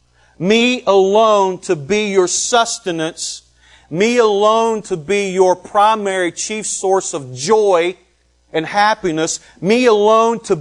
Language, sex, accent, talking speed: English, male, American, 120 wpm